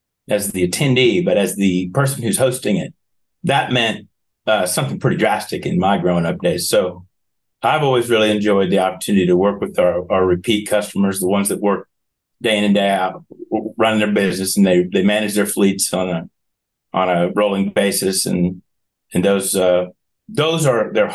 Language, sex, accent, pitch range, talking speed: English, male, American, 95-135 Hz, 185 wpm